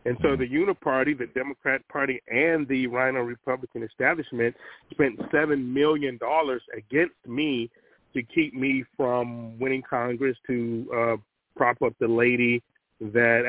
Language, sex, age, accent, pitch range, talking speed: English, male, 30-49, American, 115-130 Hz, 140 wpm